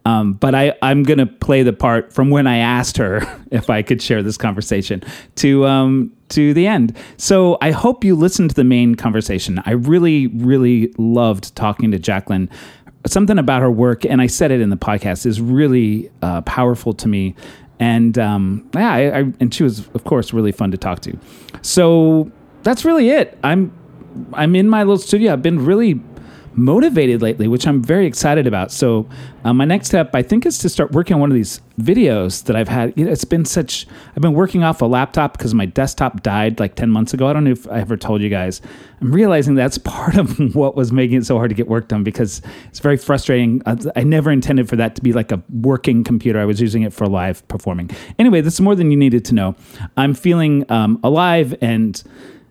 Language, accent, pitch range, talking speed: English, American, 110-150 Hz, 215 wpm